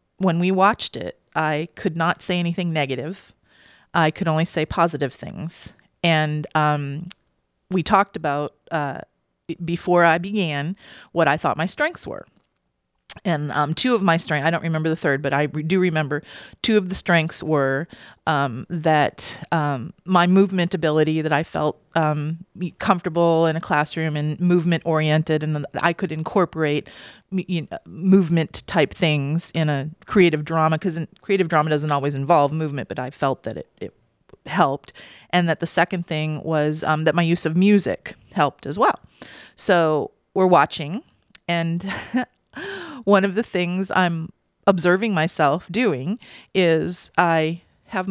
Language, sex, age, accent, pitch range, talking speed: English, female, 40-59, American, 155-190 Hz, 155 wpm